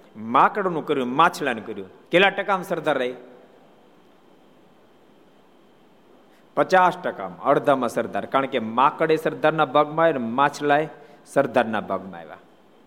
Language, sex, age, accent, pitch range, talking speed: Gujarati, male, 50-69, native, 125-160 Hz, 50 wpm